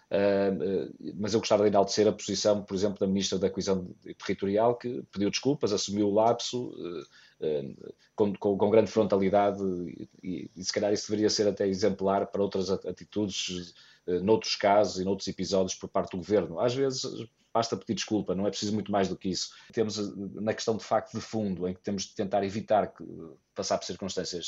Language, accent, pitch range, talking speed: Portuguese, Portuguese, 95-110 Hz, 185 wpm